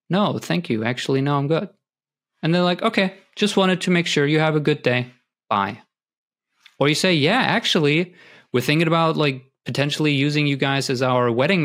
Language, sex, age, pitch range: English, male, 30-49, 120-155 Hz